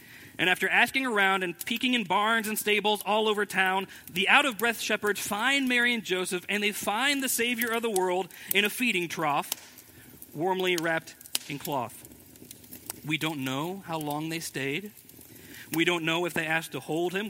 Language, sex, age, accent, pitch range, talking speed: English, male, 40-59, American, 140-185 Hz, 180 wpm